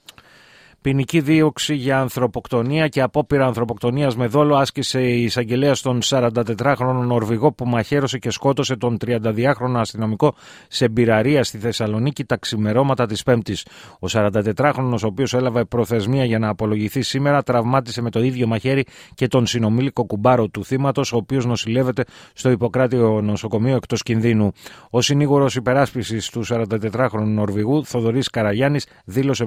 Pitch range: 110-145 Hz